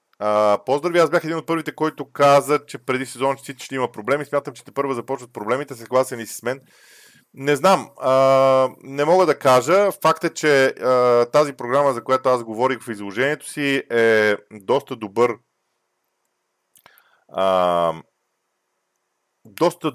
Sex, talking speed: male, 155 wpm